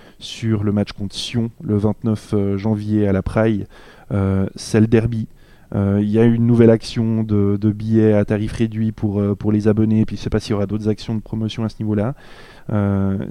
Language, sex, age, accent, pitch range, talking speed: French, male, 20-39, French, 100-115 Hz, 220 wpm